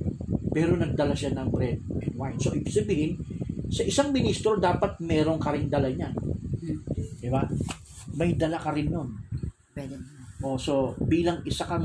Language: Filipino